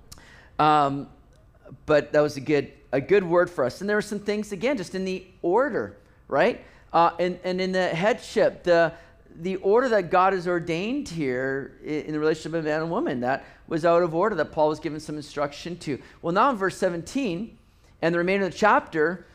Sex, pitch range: male, 155-195 Hz